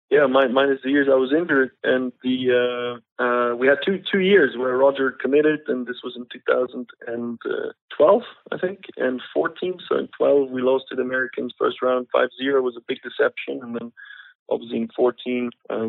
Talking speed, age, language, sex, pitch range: 205 wpm, 20-39, English, male, 120-135 Hz